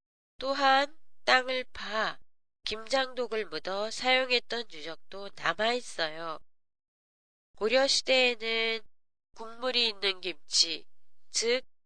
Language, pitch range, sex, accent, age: Japanese, 175-245 Hz, female, Korean, 20-39